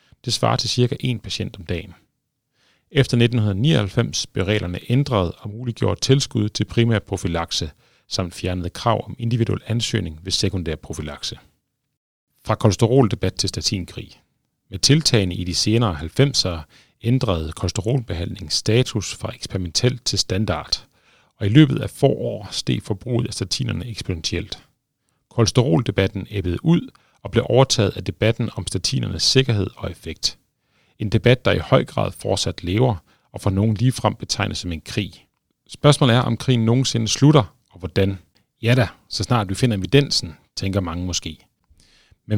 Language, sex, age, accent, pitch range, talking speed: Danish, male, 40-59, native, 95-125 Hz, 145 wpm